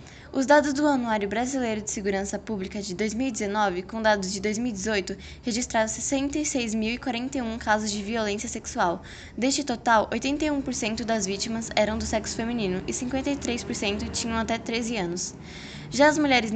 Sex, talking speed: female, 140 wpm